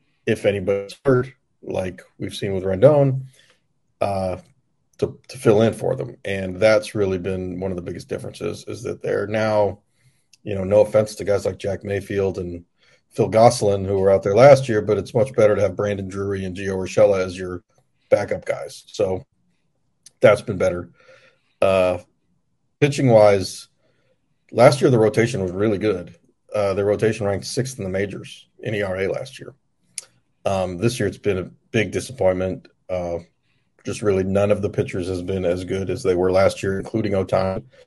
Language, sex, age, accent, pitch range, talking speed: English, male, 40-59, American, 95-110 Hz, 175 wpm